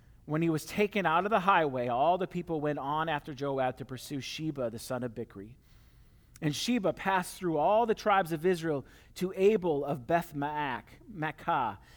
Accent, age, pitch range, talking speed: American, 40-59, 130-185 Hz, 180 wpm